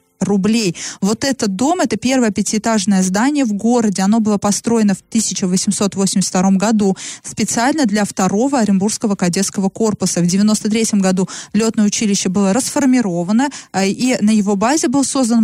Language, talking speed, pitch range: Russian, 135 wpm, 195-235 Hz